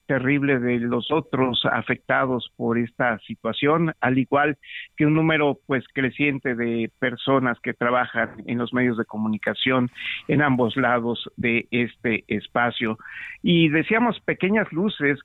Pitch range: 120-145 Hz